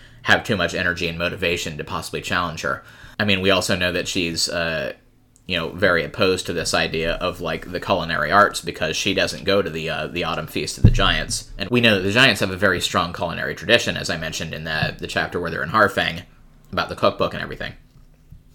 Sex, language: male, English